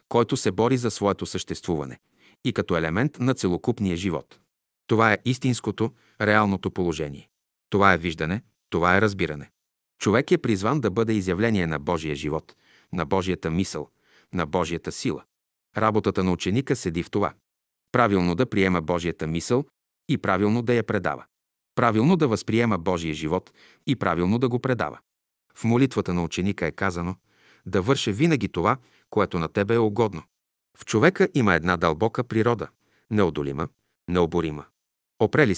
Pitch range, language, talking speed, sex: 90-115 Hz, Bulgarian, 150 wpm, male